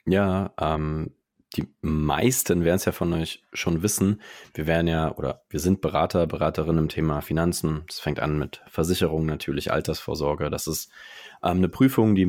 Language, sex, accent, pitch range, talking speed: German, male, German, 75-90 Hz, 170 wpm